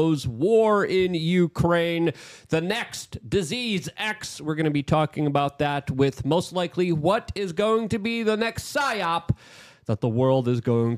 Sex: male